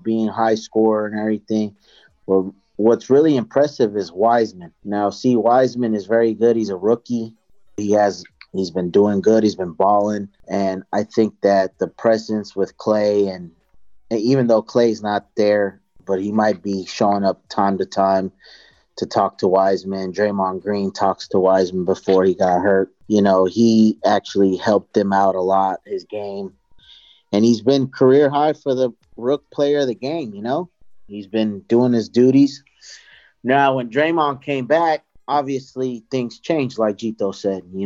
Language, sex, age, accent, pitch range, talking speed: English, male, 30-49, American, 100-125 Hz, 170 wpm